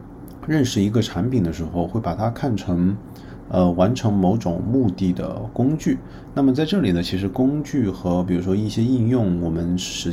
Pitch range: 90-110 Hz